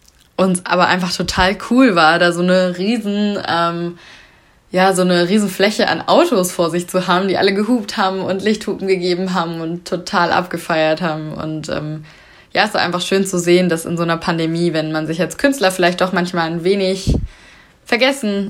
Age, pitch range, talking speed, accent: 20-39, 160-185 Hz, 190 wpm, German